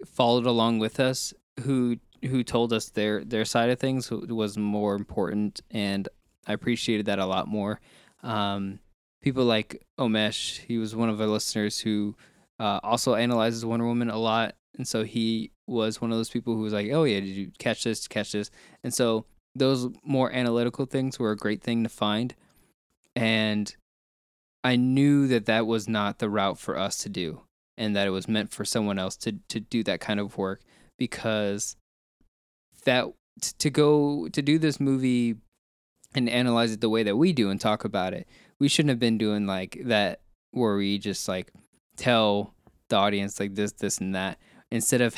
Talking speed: 185 wpm